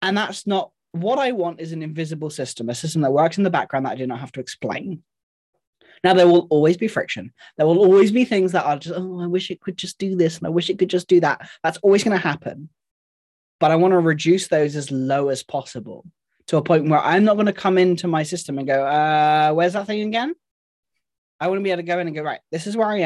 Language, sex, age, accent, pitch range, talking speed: English, male, 20-39, British, 150-185 Hz, 265 wpm